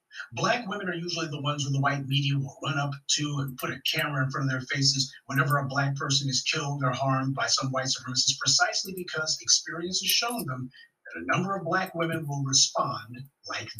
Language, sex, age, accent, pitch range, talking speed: English, male, 50-69, American, 135-160 Hz, 220 wpm